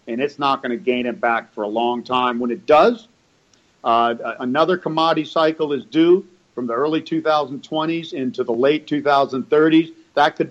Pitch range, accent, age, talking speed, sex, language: 130-165 Hz, American, 50-69, 175 wpm, male, English